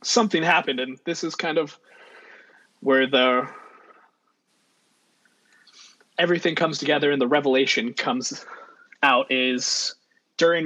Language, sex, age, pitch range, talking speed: English, male, 20-39, 135-170 Hz, 105 wpm